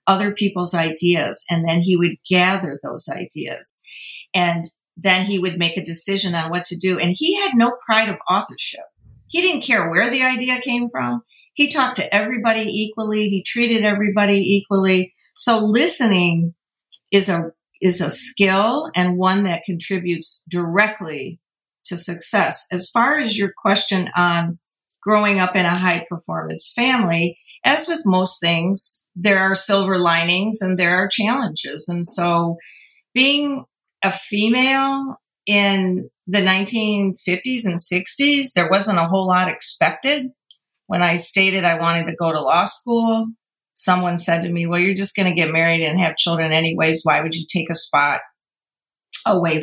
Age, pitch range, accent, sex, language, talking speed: 50-69, 175-220 Hz, American, female, English, 160 wpm